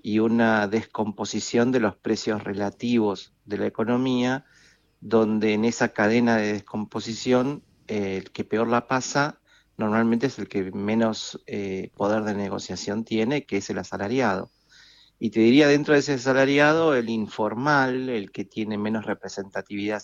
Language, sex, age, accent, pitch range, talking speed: Spanish, male, 40-59, Argentinian, 100-120 Hz, 150 wpm